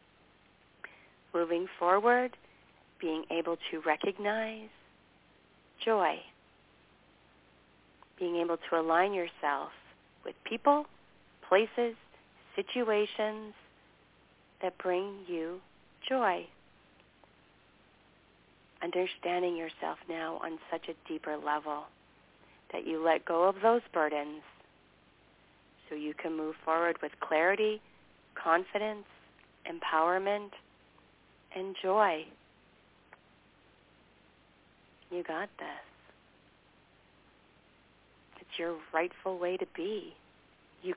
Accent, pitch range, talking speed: American, 160-215 Hz, 80 wpm